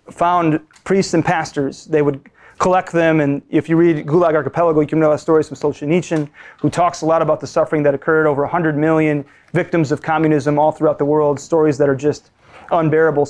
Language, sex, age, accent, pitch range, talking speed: English, male, 30-49, American, 145-165 Hz, 205 wpm